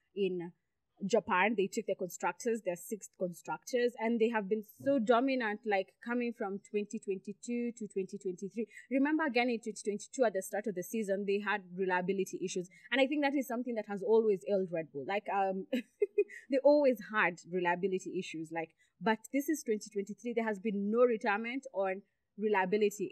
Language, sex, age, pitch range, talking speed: English, female, 20-39, 190-235 Hz, 190 wpm